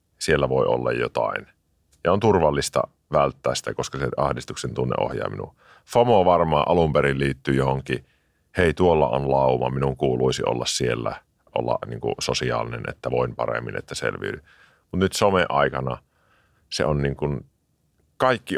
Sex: male